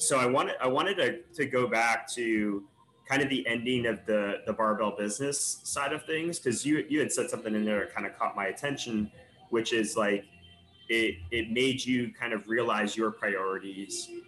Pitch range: 105-125 Hz